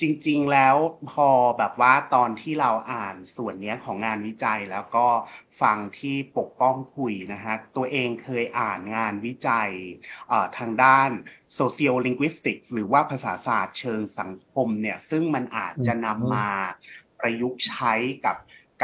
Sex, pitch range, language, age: male, 115-145 Hz, Thai, 30-49